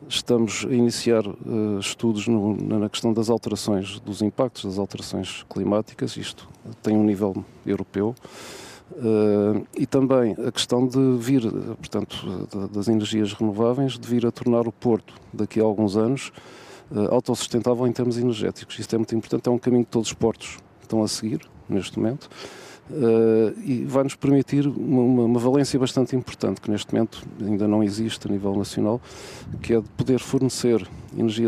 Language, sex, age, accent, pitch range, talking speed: Portuguese, male, 40-59, Portuguese, 105-125 Hz, 165 wpm